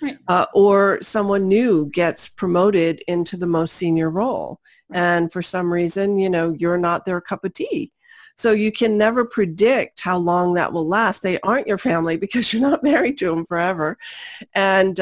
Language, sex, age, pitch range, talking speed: English, female, 40-59, 165-205 Hz, 180 wpm